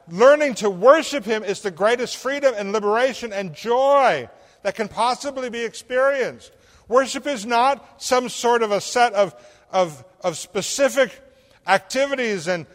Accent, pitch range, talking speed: American, 185-255 Hz, 145 wpm